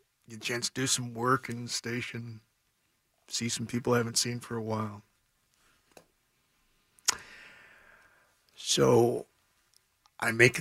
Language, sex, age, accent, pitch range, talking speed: English, male, 60-79, American, 115-145 Hz, 125 wpm